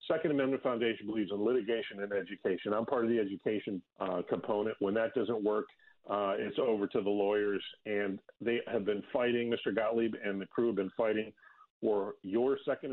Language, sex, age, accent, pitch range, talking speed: English, male, 40-59, American, 105-125 Hz, 190 wpm